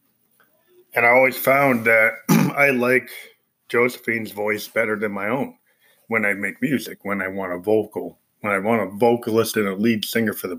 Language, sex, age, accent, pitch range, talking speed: English, male, 20-39, American, 110-125 Hz, 185 wpm